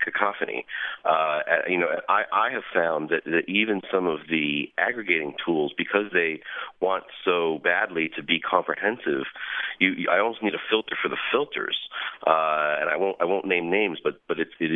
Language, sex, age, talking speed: English, male, 40-59, 185 wpm